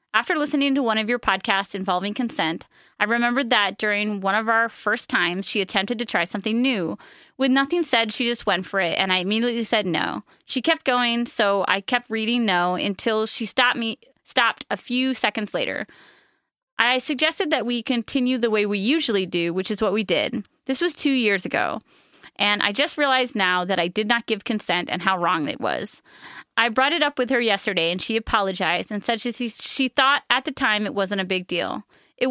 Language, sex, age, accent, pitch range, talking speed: English, female, 30-49, American, 205-260 Hz, 210 wpm